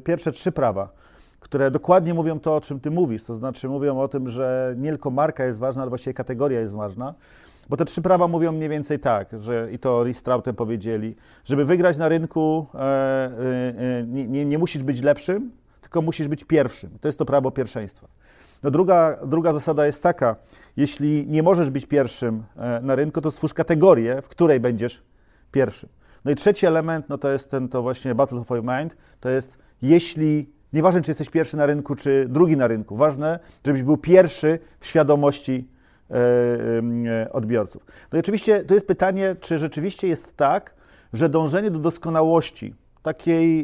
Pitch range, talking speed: 130-165 Hz, 180 wpm